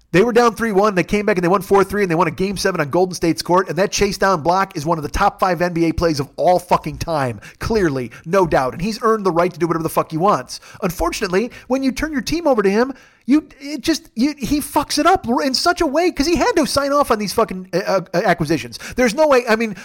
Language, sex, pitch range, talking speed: English, male, 175-250 Hz, 270 wpm